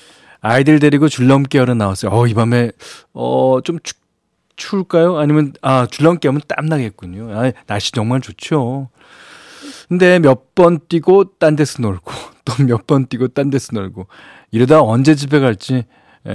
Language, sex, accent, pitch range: Korean, male, native, 105-140 Hz